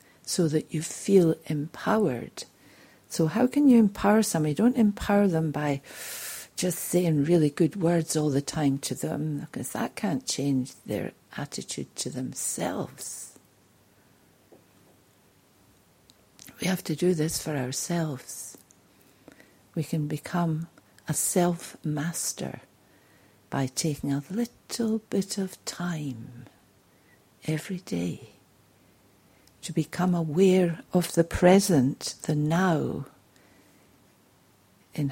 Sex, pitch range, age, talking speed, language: female, 135-185 Hz, 60-79, 110 wpm, English